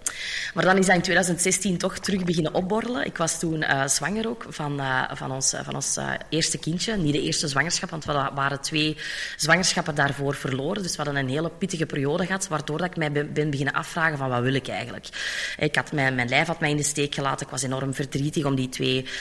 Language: Dutch